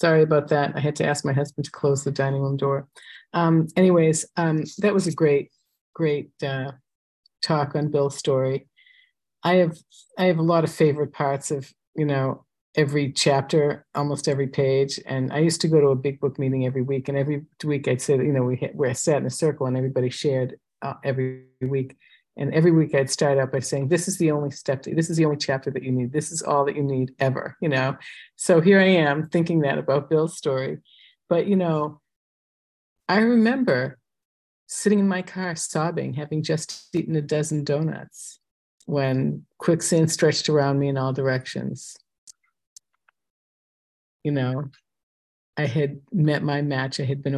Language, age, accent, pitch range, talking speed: English, 50-69, American, 135-160 Hz, 190 wpm